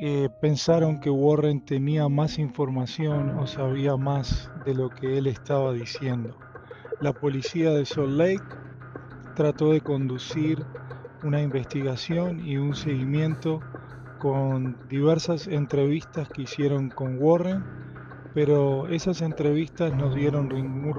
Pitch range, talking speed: 130-155 Hz, 120 wpm